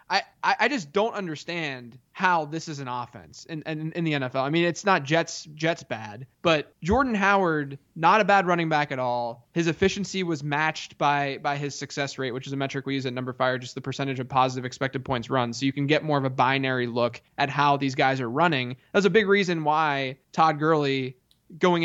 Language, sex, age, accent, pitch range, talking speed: English, male, 20-39, American, 135-165 Hz, 225 wpm